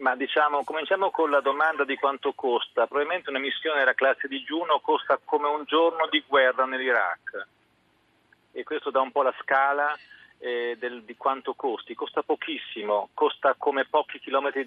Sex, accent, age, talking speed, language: male, native, 40-59, 165 wpm, Italian